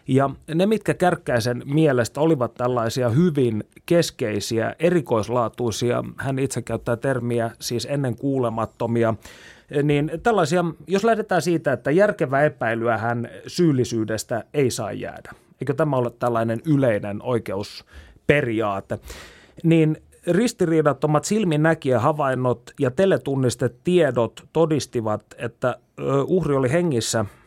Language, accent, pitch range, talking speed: Finnish, native, 115-155 Hz, 100 wpm